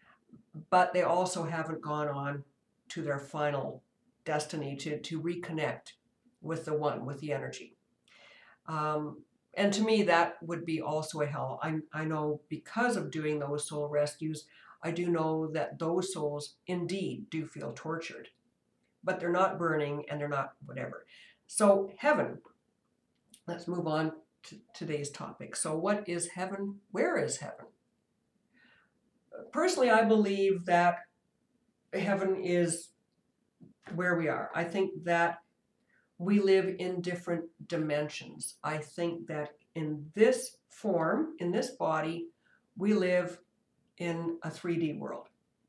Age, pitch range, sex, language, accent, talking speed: 60-79, 155-190 Hz, female, English, American, 135 wpm